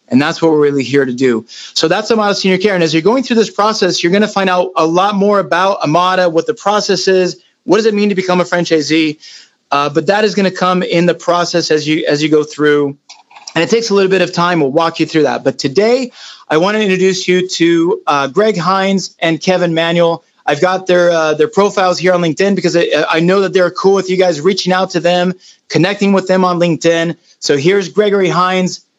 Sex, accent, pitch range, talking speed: male, American, 160-195 Hz, 240 wpm